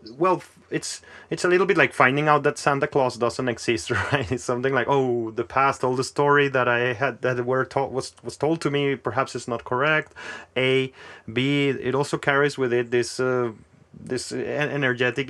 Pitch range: 120-140 Hz